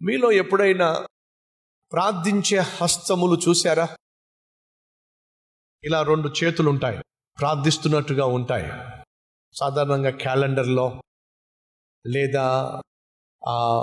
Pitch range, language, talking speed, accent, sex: 130-175 Hz, Telugu, 60 wpm, native, male